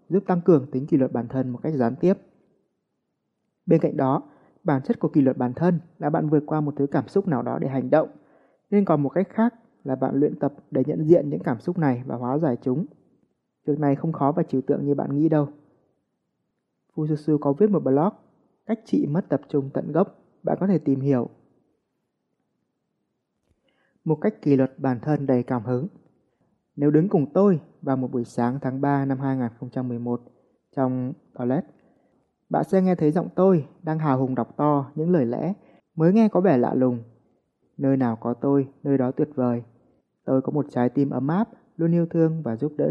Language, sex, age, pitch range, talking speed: Vietnamese, male, 20-39, 130-170 Hz, 205 wpm